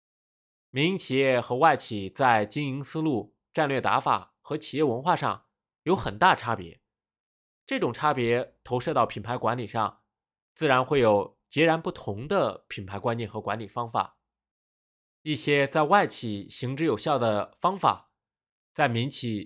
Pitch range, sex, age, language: 110-145 Hz, male, 20-39, Chinese